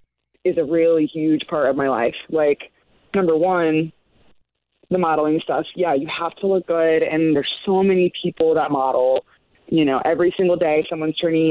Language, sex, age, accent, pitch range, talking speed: English, female, 20-39, American, 150-175 Hz, 175 wpm